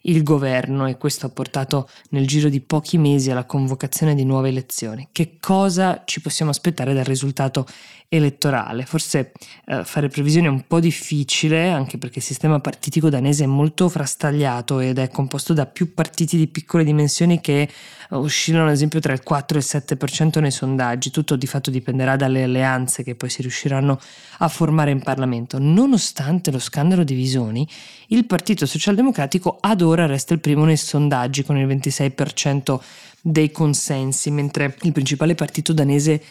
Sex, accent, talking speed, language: female, native, 165 wpm, Italian